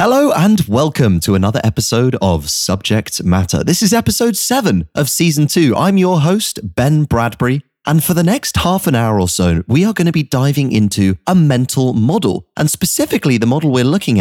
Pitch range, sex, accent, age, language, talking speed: 100-155 Hz, male, British, 30-49, English, 195 wpm